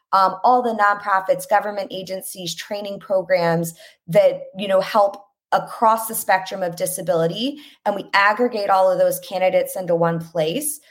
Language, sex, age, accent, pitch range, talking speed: English, female, 20-39, American, 170-205 Hz, 150 wpm